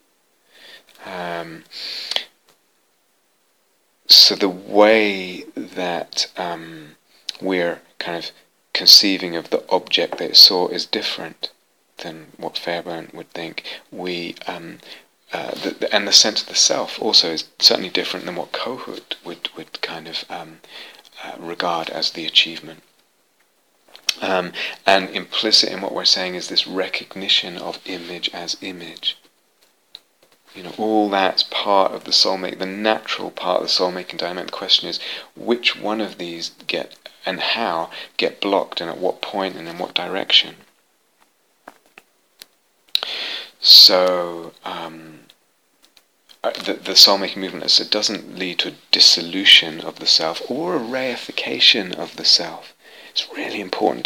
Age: 30-49